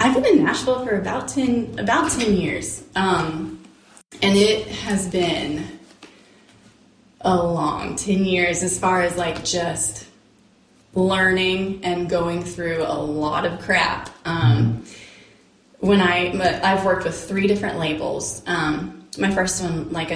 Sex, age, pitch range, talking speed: female, 20-39, 165-205 Hz, 140 wpm